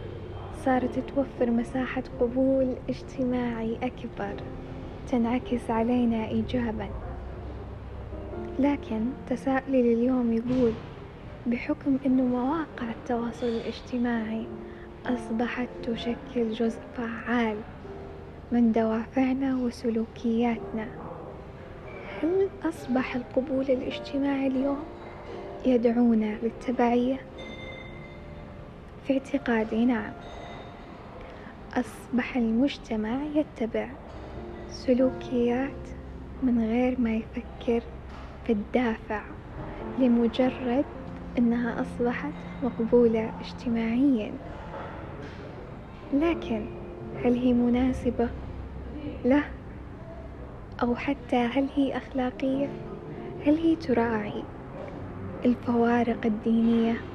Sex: female